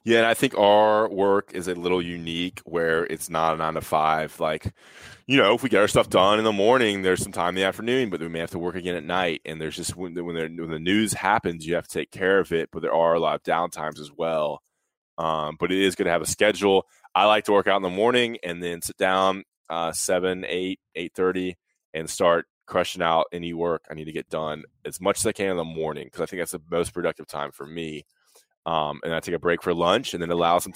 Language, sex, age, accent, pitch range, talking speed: English, male, 20-39, American, 80-100 Hz, 265 wpm